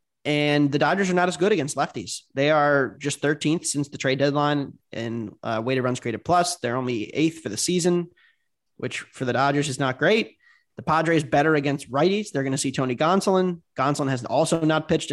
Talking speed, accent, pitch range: 205 wpm, American, 130-165 Hz